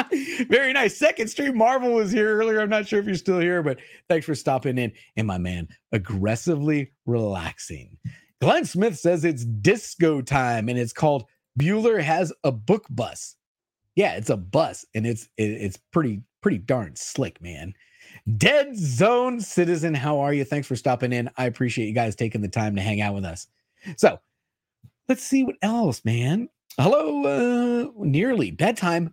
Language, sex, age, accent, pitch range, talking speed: English, male, 40-59, American, 125-205 Hz, 170 wpm